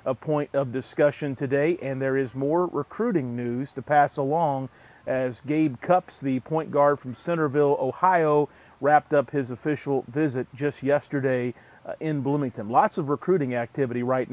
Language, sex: English, male